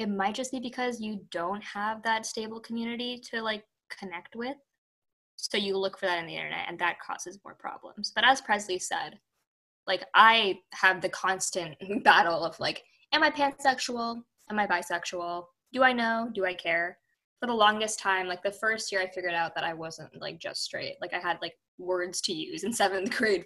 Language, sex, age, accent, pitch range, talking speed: English, female, 10-29, American, 185-230 Hz, 200 wpm